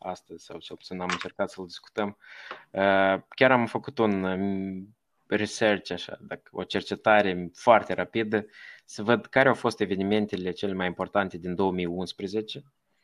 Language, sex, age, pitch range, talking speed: Romanian, male, 20-39, 95-125 Hz, 130 wpm